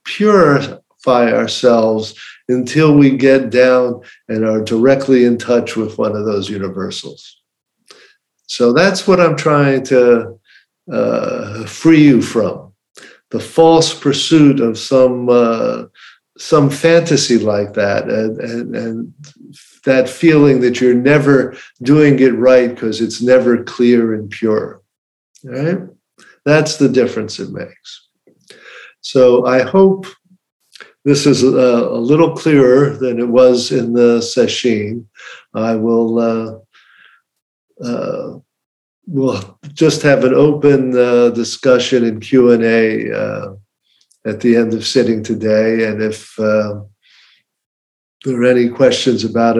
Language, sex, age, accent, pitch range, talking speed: English, male, 50-69, American, 115-135 Hz, 120 wpm